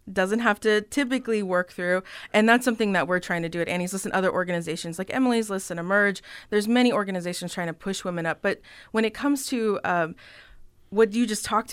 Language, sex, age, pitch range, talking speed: English, female, 20-39, 175-210 Hz, 220 wpm